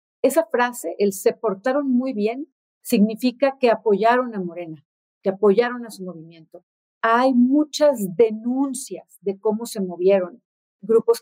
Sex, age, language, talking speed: female, 40-59, Spanish, 135 wpm